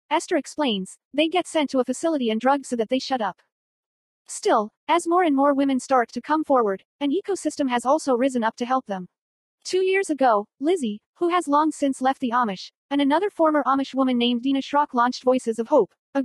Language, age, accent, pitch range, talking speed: English, 40-59, American, 240-310 Hz, 215 wpm